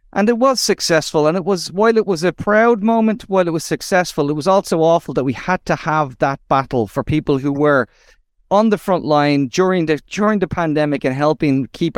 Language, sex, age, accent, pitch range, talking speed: English, male, 30-49, Irish, 150-200 Hz, 220 wpm